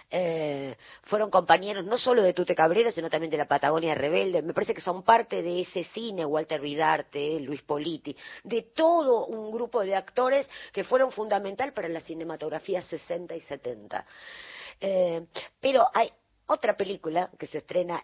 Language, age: Spanish, 40-59